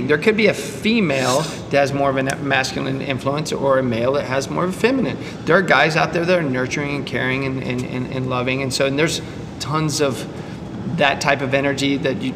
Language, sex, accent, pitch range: English, male, American, 135-160 Hz